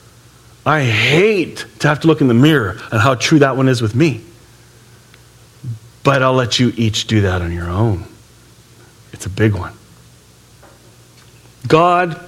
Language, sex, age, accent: English, male, 40-59, American